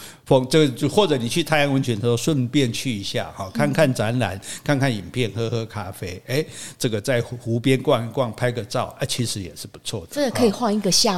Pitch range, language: 115-155 Hz, Chinese